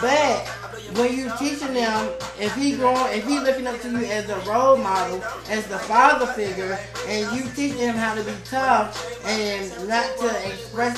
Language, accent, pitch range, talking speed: English, American, 230-270 Hz, 180 wpm